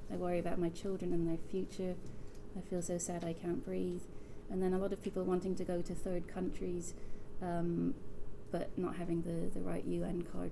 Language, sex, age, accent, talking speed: English, female, 30-49, British, 205 wpm